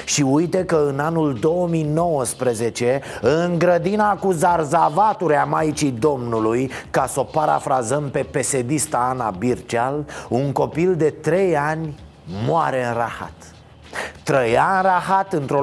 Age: 30-49